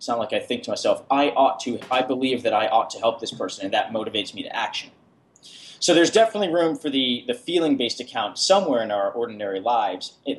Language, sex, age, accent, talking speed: English, male, 30-49, American, 230 wpm